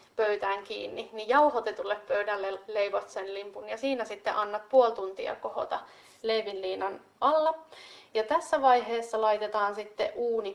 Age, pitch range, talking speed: 30-49, 205-250 Hz, 130 wpm